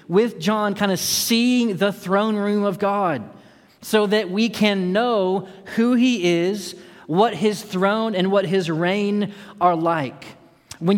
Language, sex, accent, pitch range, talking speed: English, male, American, 165-215 Hz, 155 wpm